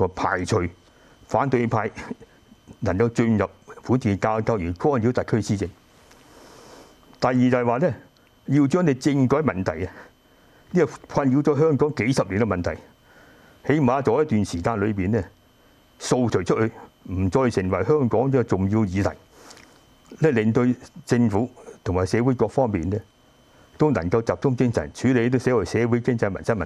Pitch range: 105-135 Hz